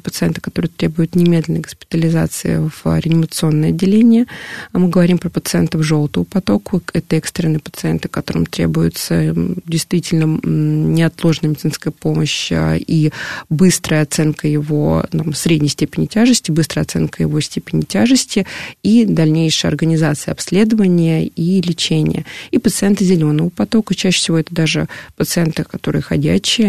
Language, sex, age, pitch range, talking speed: Russian, female, 20-39, 155-180 Hz, 120 wpm